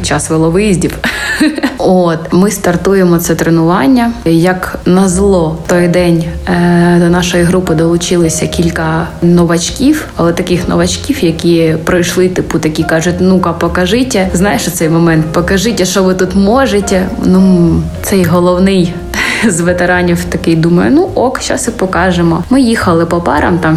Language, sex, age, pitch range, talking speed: Ukrainian, female, 20-39, 170-195 Hz, 140 wpm